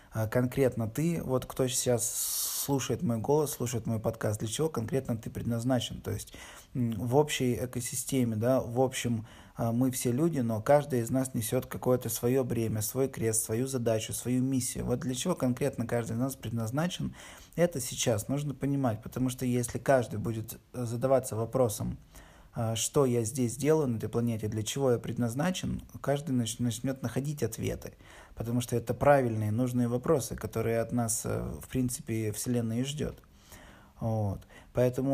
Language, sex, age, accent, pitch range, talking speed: Russian, male, 20-39, native, 115-135 Hz, 155 wpm